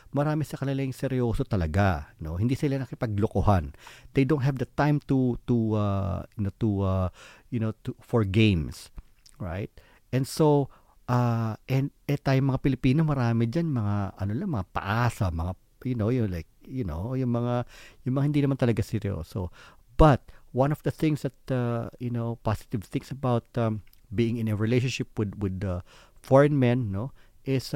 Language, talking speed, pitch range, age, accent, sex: Filipino, 175 wpm, 100-130 Hz, 50-69, native, male